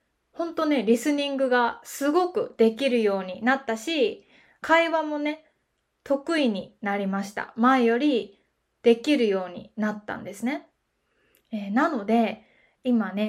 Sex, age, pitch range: female, 20-39, 215-295 Hz